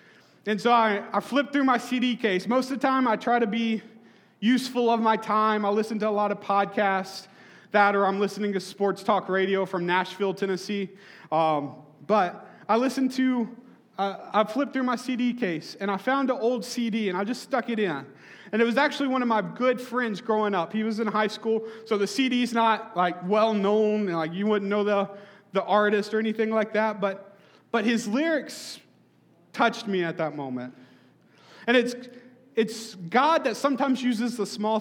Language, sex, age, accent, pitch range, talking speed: English, male, 30-49, American, 200-240 Hz, 200 wpm